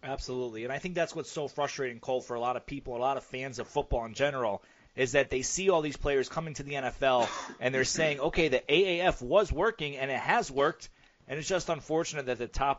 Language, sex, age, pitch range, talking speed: English, male, 30-49, 130-155 Hz, 245 wpm